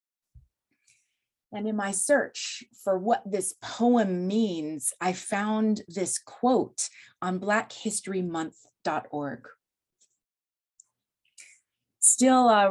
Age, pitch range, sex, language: 30-49, 180-230 Hz, female, English